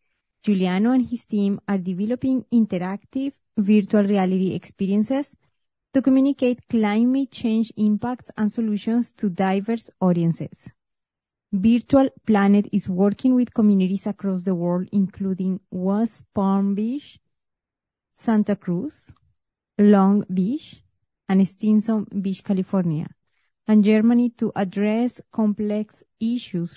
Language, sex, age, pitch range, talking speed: English, female, 30-49, 190-230 Hz, 105 wpm